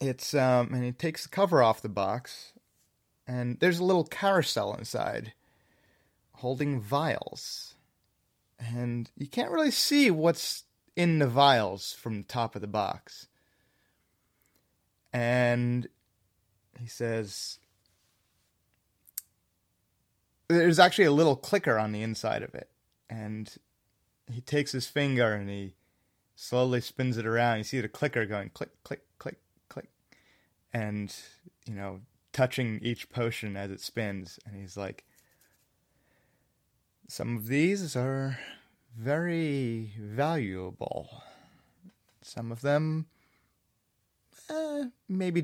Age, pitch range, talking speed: 30-49, 100-140 Hz, 115 wpm